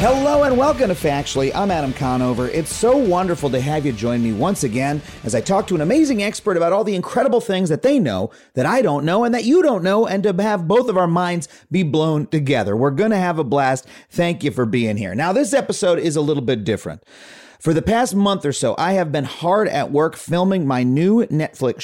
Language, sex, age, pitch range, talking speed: English, male, 30-49, 145-205 Hz, 235 wpm